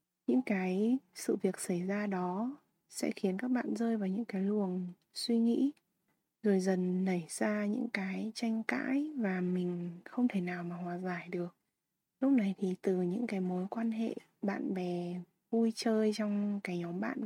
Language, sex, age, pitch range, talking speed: Vietnamese, female, 20-39, 180-230 Hz, 180 wpm